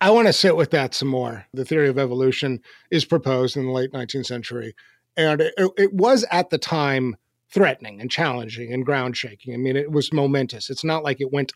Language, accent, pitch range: English, American, 130-175 Hz